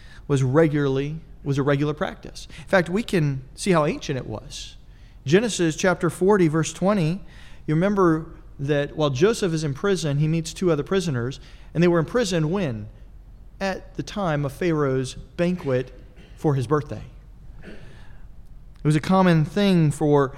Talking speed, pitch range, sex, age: 160 wpm, 140-170 Hz, male, 40-59